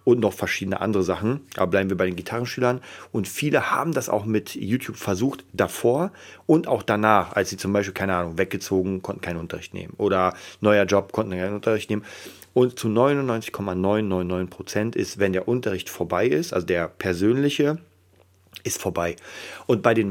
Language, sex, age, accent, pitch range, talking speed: German, male, 40-59, German, 95-110 Hz, 175 wpm